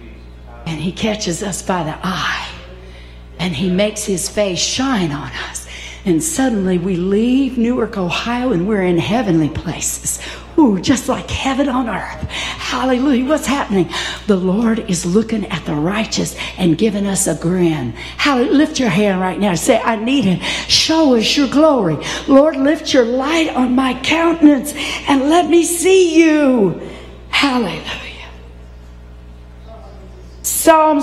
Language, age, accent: English, 60-79, American